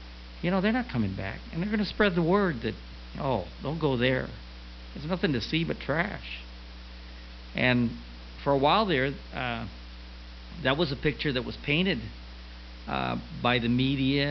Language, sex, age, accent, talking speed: English, male, 50-69, American, 170 wpm